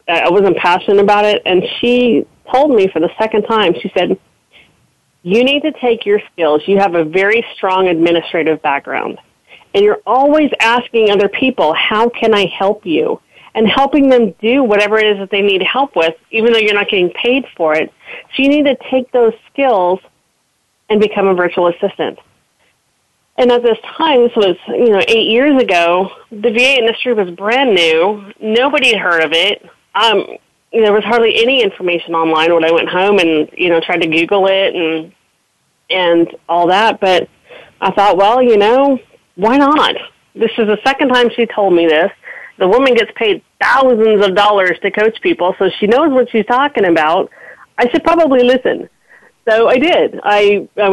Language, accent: English, American